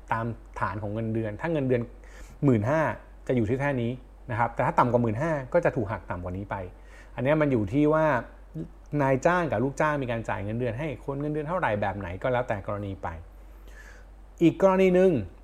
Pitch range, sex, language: 105-145 Hz, male, Thai